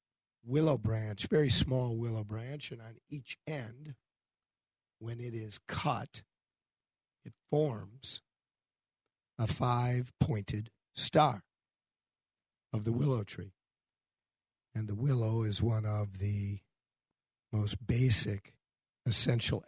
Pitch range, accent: 105-130 Hz, American